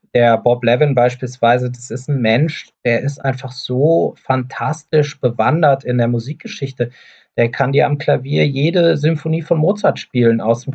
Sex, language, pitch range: male, German, 125-150 Hz